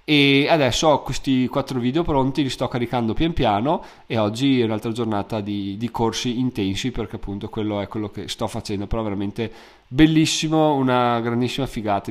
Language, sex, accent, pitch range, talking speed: Italian, male, native, 115-140 Hz, 175 wpm